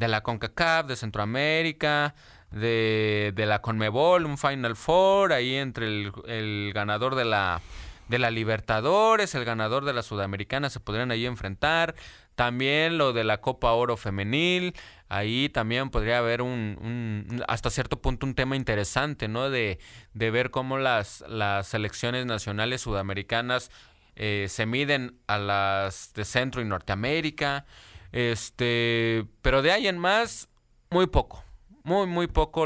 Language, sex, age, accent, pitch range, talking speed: Spanish, male, 20-39, Mexican, 110-150 Hz, 145 wpm